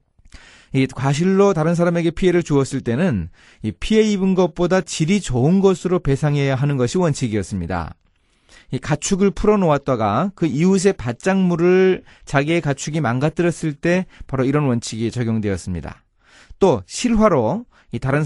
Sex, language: male, Korean